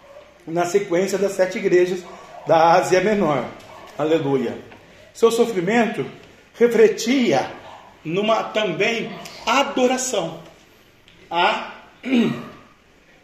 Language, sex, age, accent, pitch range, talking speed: Portuguese, male, 40-59, Brazilian, 165-225 Hz, 75 wpm